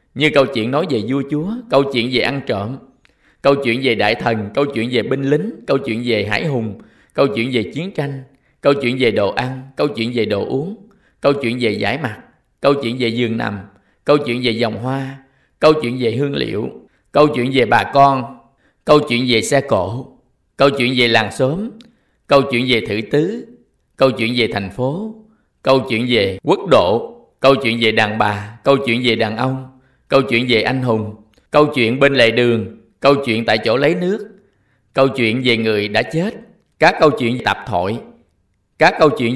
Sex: male